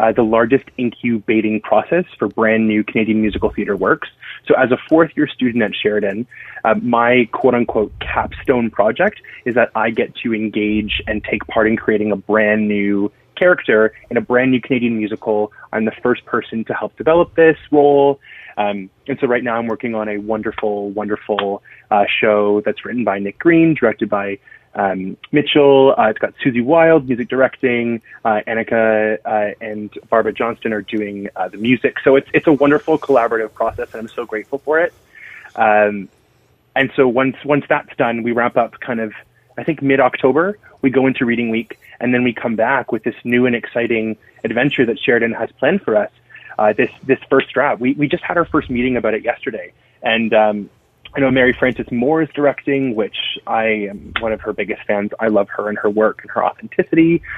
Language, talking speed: English, 200 wpm